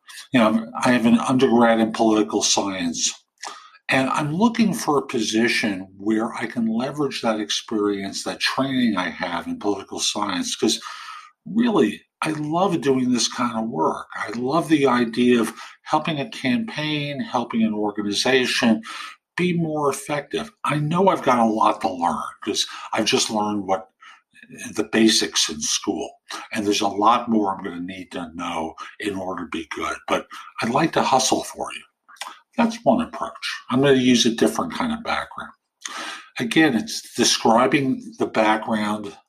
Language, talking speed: English, 165 wpm